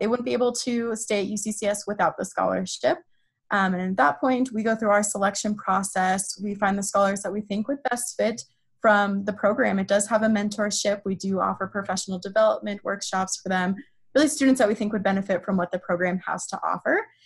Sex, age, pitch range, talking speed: female, 20-39, 195-235 Hz, 215 wpm